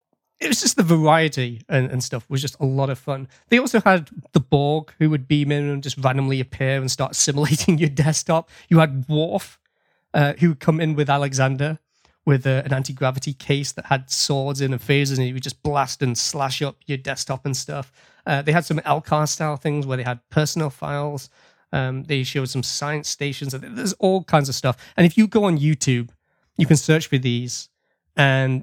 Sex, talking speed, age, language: male, 205 wpm, 30-49, English